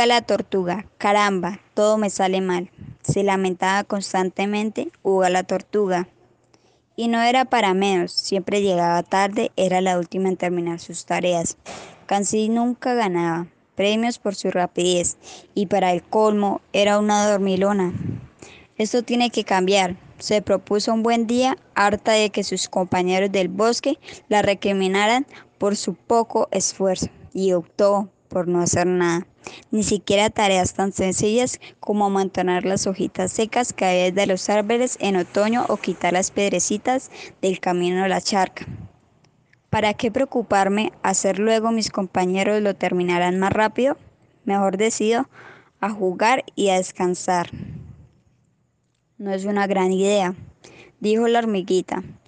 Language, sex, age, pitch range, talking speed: Spanish, male, 20-39, 185-215 Hz, 140 wpm